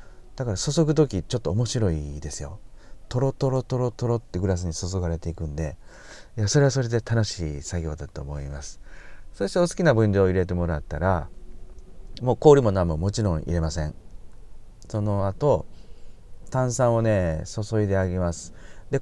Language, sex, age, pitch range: Japanese, male, 40-59, 85-120 Hz